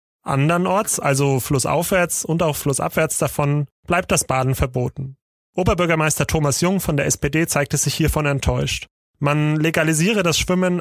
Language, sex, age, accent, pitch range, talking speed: German, male, 30-49, German, 135-170 Hz, 140 wpm